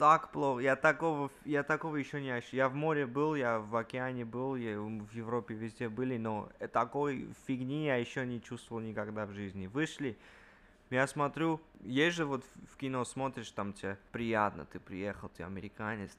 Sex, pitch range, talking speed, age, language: male, 110-145 Hz, 175 wpm, 20-39, Russian